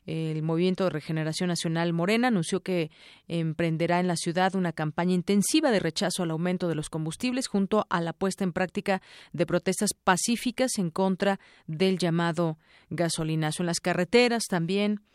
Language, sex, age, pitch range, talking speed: Spanish, female, 40-59, 165-200 Hz, 160 wpm